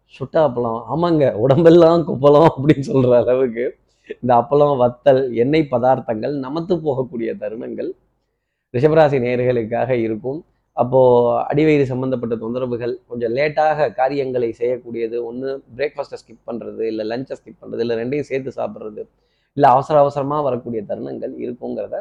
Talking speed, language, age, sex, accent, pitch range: 120 wpm, Tamil, 20-39, male, native, 120-150 Hz